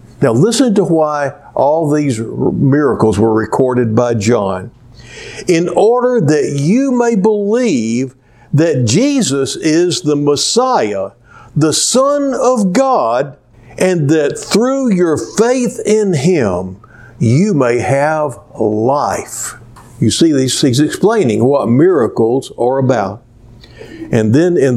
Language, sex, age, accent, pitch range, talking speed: English, male, 60-79, American, 120-190 Hz, 115 wpm